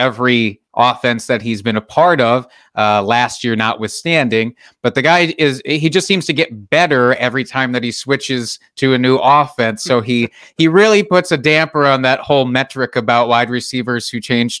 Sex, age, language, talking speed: male, 30-49, English, 195 wpm